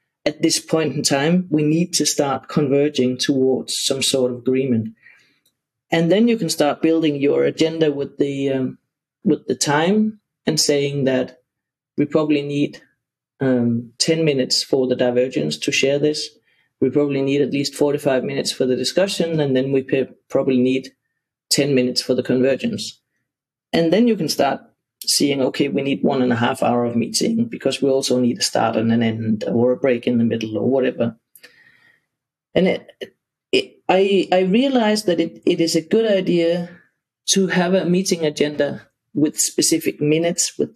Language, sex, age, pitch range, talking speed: English, male, 30-49, 130-170 Hz, 175 wpm